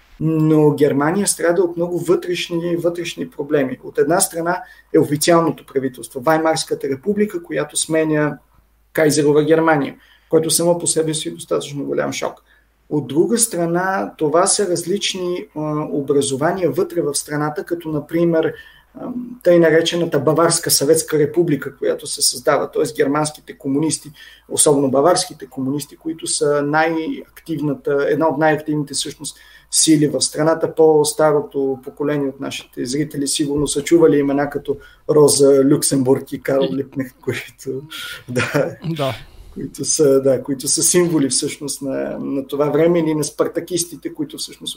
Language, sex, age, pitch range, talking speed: Bulgarian, male, 30-49, 140-175 Hz, 130 wpm